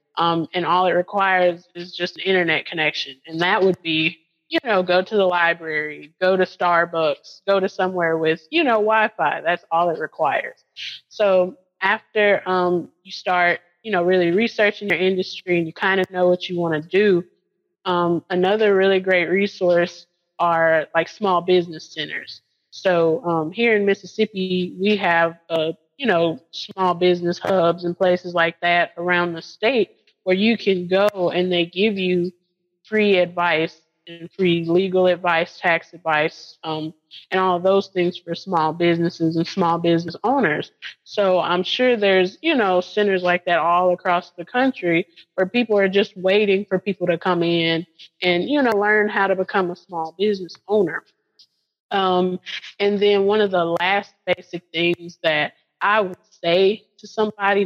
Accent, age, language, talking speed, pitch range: American, 20-39, English, 170 wpm, 170-195 Hz